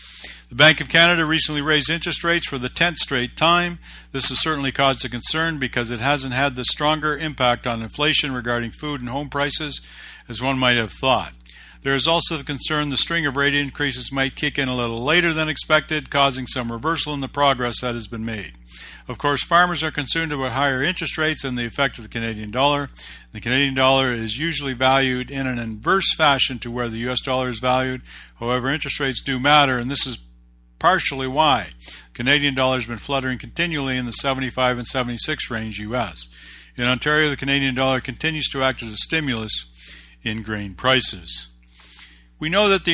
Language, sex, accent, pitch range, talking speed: English, male, American, 120-150 Hz, 195 wpm